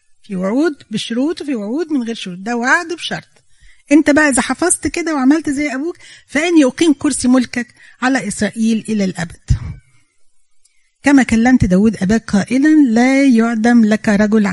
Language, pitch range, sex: Arabic, 190-260 Hz, female